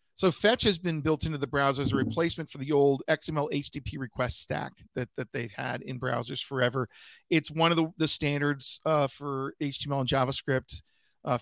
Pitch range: 130-150 Hz